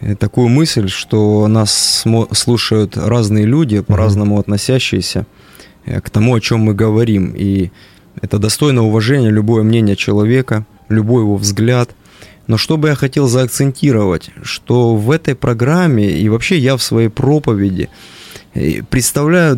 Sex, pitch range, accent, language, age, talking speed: male, 110-135 Hz, native, Russian, 20-39, 130 wpm